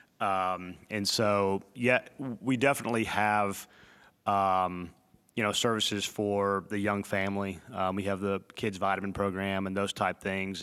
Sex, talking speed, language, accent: male, 145 wpm, English, American